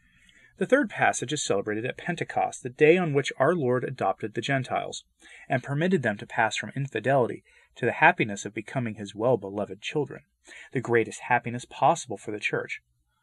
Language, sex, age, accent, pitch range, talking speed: English, male, 30-49, American, 115-165 Hz, 170 wpm